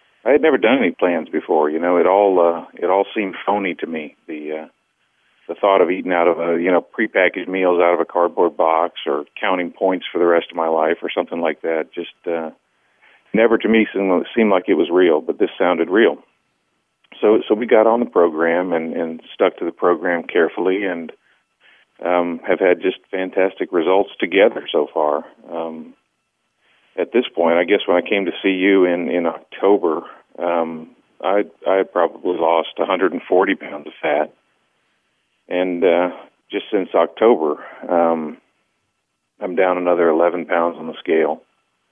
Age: 40-59